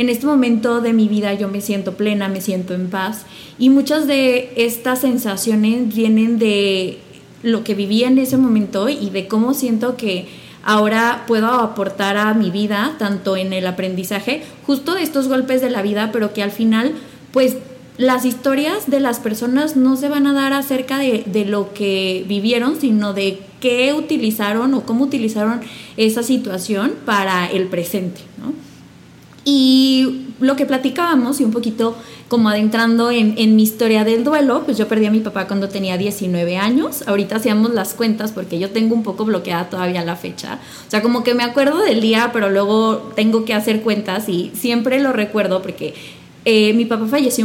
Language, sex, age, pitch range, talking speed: Spanish, female, 20-39, 200-255 Hz, 180 wpm